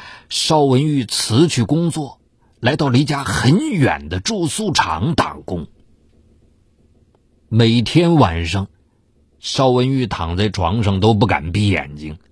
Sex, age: male, 50-69